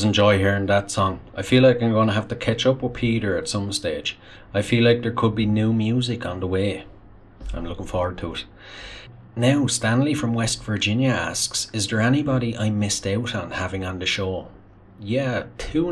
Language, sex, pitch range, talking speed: English, male, 95-115 Hz, 205 wpm